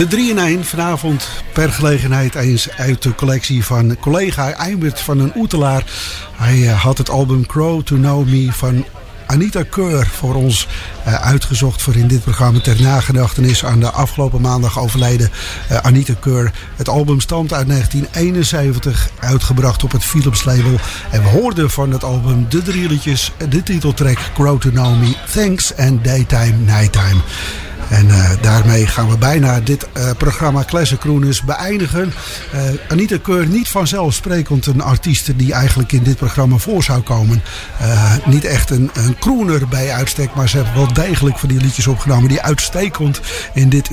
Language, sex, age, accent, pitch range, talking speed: English, male, 50-69, Dutch, 120-145 Hz, 165 wpm